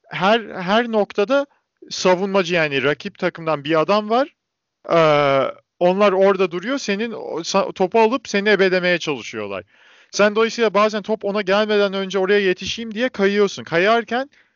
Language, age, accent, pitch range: Turkish, 40-59, native, 185-230 Hz